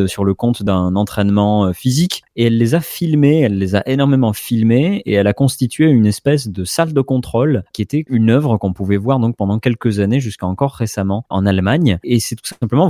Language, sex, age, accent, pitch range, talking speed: French, male, 20-39, French, 100-125 Hz, 215 wpm